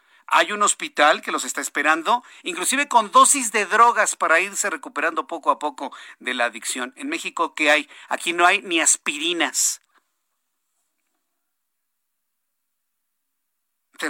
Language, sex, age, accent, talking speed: Spanish, male, 50-69, Mexican, 130 wpm